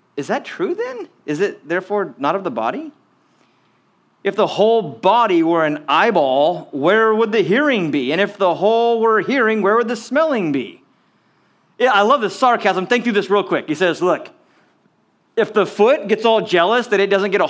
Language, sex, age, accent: English, male, 30-49, American